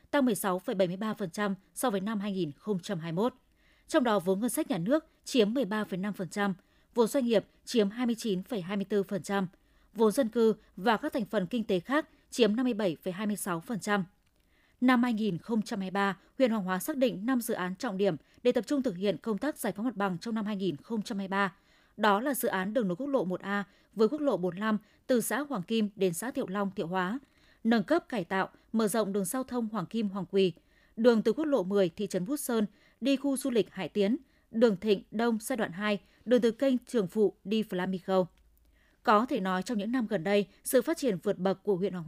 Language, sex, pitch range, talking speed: Vietnamese, female, 195-245 Hz, 195 wpm